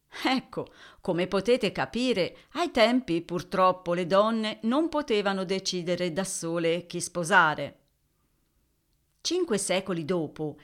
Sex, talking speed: female, 105 wpm